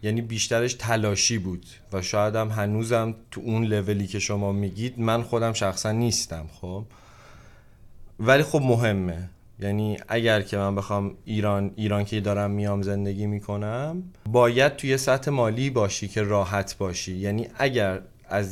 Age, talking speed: 30-49, 150 wpm